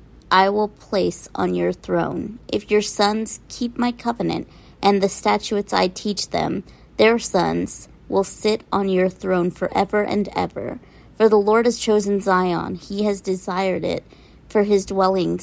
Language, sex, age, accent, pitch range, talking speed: English, female, 30-49, American, 185-210 Hz, 160 wpm